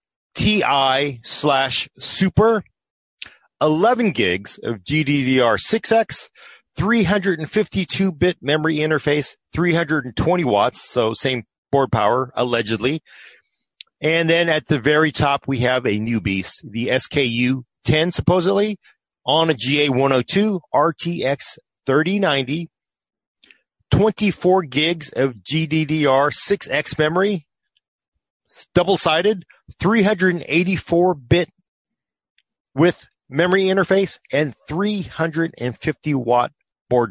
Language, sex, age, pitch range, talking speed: English, male, 30-49, 130-170 Hz, 80 wpm